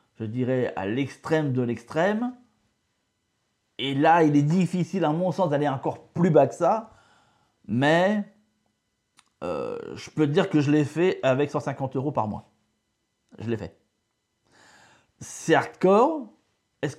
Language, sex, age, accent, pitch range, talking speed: French, male, 30-49, French, 120-155 Hz, 145 wpm